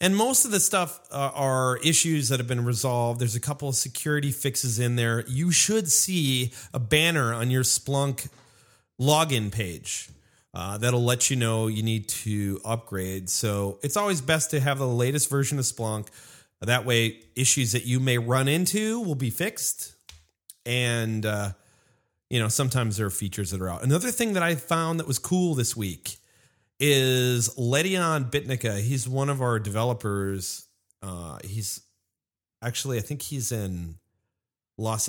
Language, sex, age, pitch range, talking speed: English, male, 30-49, 105-140 Hz, 170 wpm